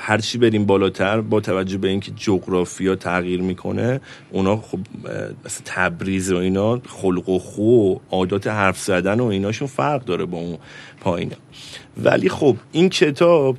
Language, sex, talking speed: Persian, male, 150 wpm